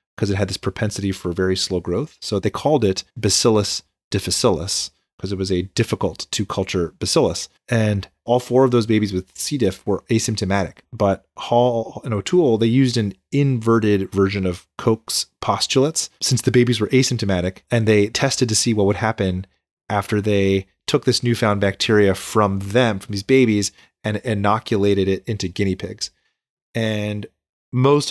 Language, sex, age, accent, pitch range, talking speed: English, male, 30-49, American, 100-120 Hz, 165 wpm